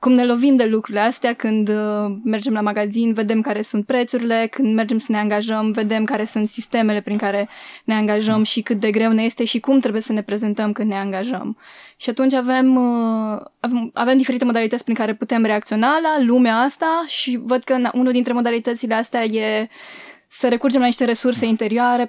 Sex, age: female, 20-39